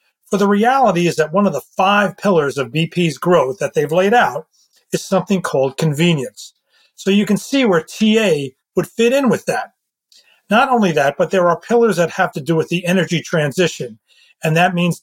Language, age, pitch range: English, 40-59, 160-205 Hz